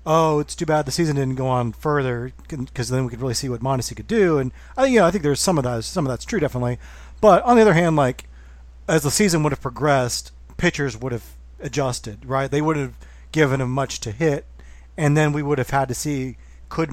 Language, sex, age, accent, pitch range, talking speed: English, male, 40-59, American, 125-165 Hz, 245 wpm